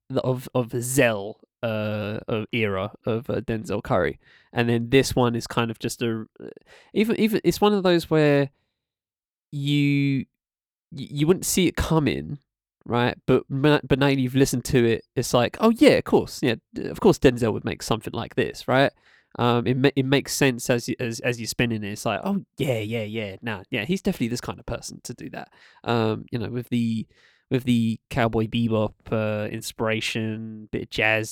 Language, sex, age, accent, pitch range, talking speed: English, male, 20-39, British, 110-130 Hz, 195 wpm